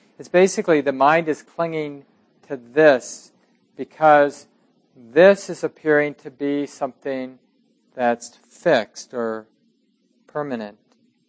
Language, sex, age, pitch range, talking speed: English, male, 50-69, 130-205 Hz, 100 wpm